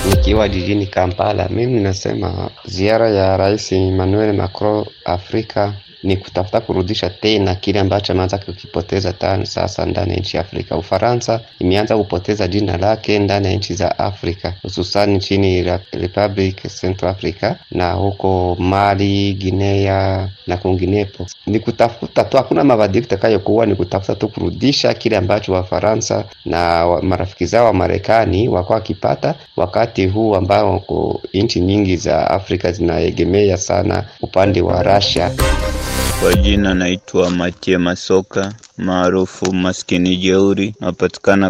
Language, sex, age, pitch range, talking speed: Swahili, male, 30-49, 90-100 Hz, 125 wpm